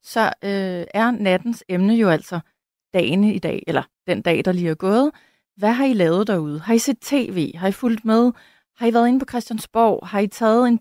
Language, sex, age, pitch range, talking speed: Danish, female, 30-49, 185-235 Hz, 220 wpm